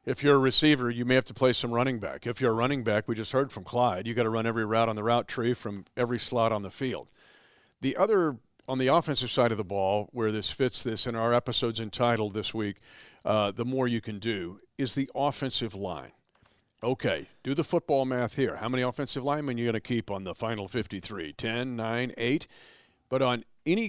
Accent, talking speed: American, 230 wpm